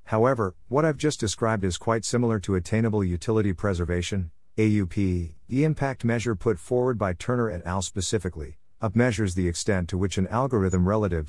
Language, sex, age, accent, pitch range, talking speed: English, male, 50-69, American, 80-115 Hz, 170 wpm